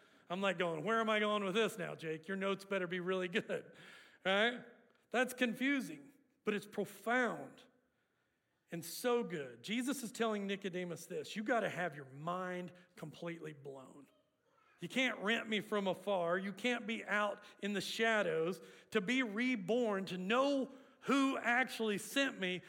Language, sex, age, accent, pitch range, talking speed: English, male, 40-59, American, 170-230 Hz, 165 wpm